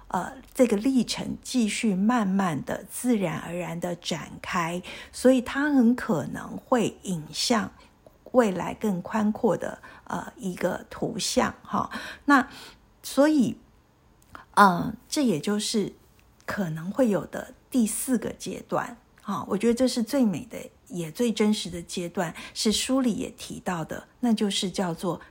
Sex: female